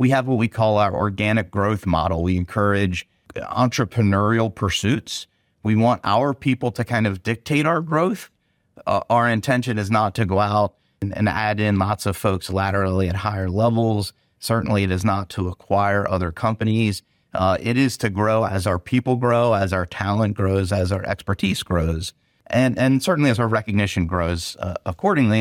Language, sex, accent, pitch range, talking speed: English, male, American, 95-115 Hz, 180 wpm